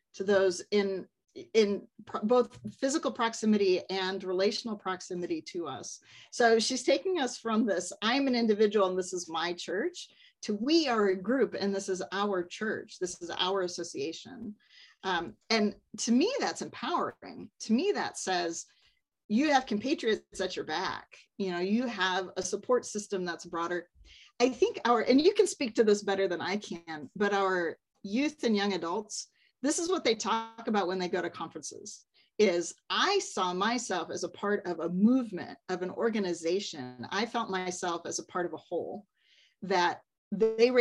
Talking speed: 180 wpm